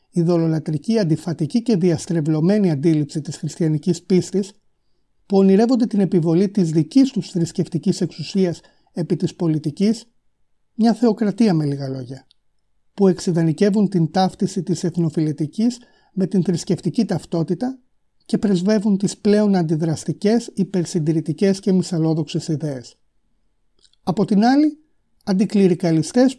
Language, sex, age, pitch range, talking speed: Greek, male, 30-49, 165-210 Hz, 110 wpm